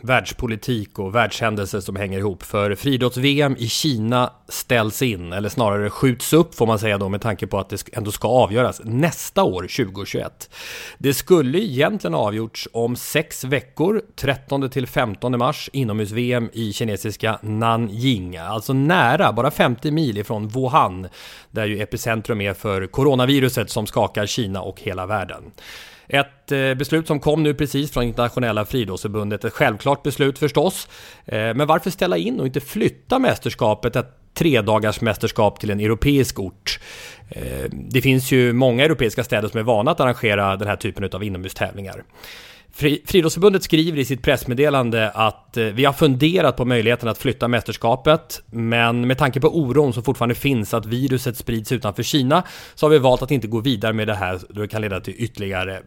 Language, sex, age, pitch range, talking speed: English, male, 30-49, 105-135 Hz, 165 wpm